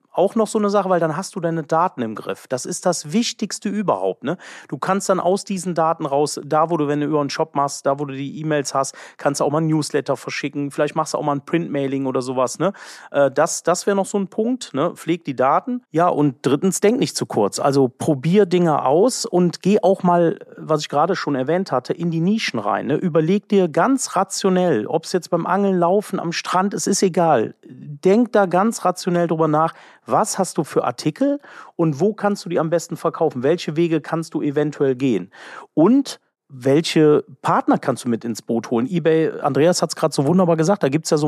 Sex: male